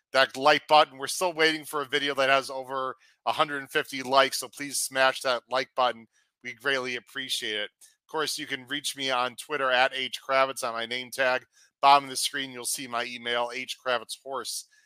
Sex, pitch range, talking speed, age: male, 125-150 Hz, 190 wpm, 40-59